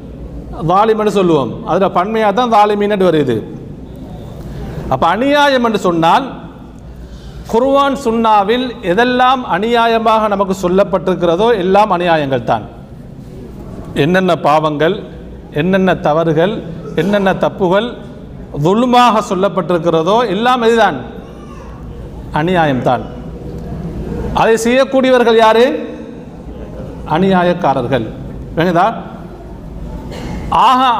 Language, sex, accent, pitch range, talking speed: Tamil, male, native, 165-230 Hz, 65 wpm